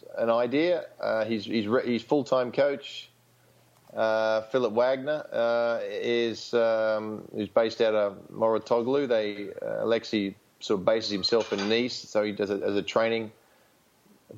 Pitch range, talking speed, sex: 110-140 Hz, 160 wpm, male